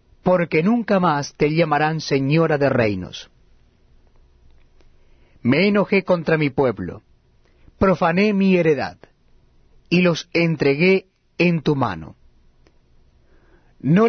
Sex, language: male, Spanish